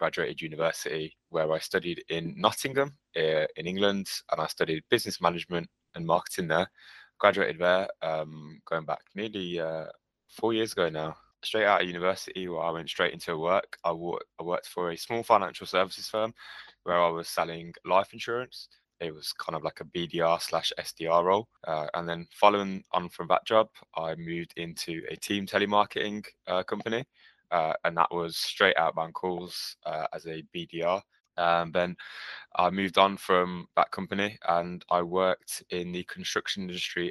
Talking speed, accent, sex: 170 wpm, British, male